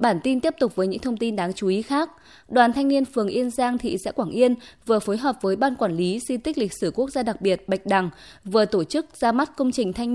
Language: Vietnamese